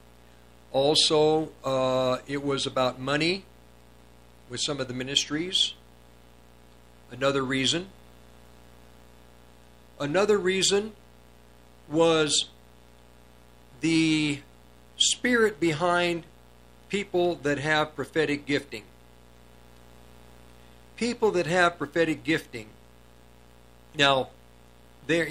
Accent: American